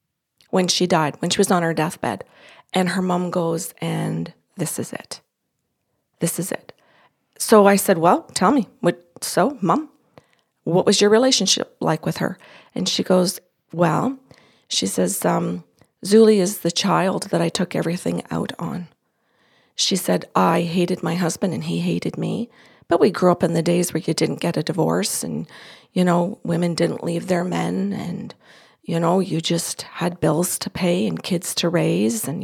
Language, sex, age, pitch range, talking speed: English, female, 40-59, 170-200 Hz, 180 wpm